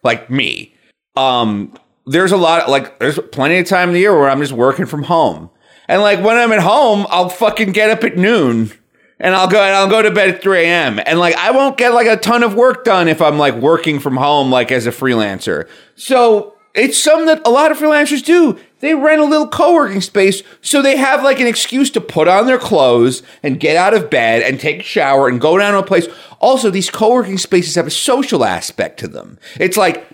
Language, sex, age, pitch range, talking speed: English, male, 30-49, 155-230 Hz, 235 wpm